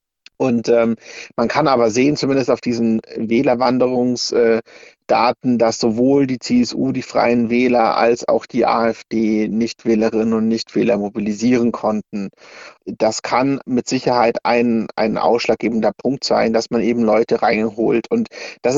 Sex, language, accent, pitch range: male, German, German, 110-125 Hz